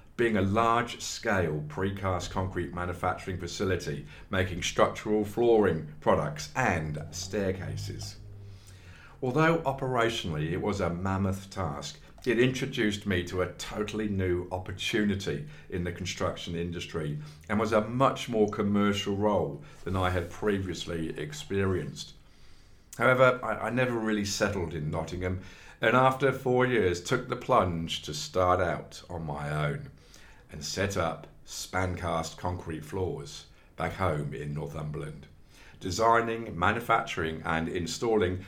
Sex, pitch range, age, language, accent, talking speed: male, 85-110 Hz, 50-69, English, British, 125 wpm